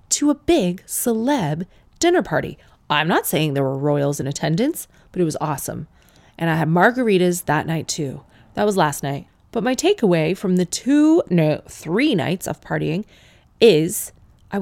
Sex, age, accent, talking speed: female, 30-49, American, 170 wpm